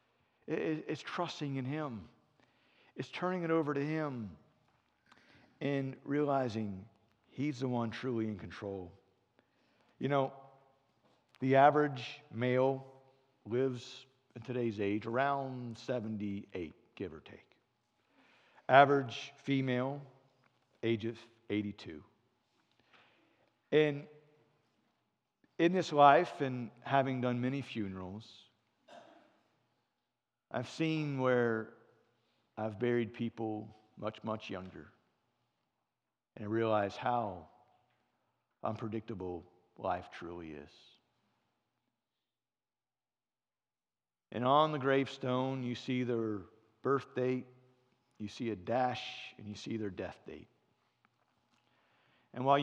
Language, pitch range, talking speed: English, 110-135 Hz, 95 wpm